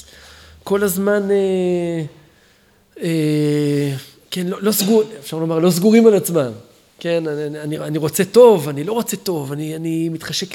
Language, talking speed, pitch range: Hebrew, 150 wpm, 155-200 Hz